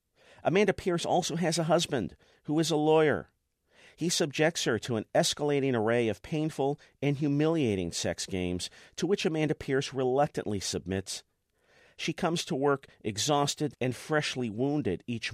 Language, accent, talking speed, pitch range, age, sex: English, American, 150 wpm, 105-150 Hz, 50-69, male